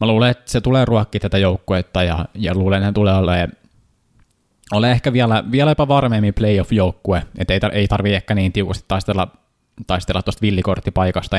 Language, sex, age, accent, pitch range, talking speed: Finnish, male, 20-39, native, 95-110 Hz, 160 wpm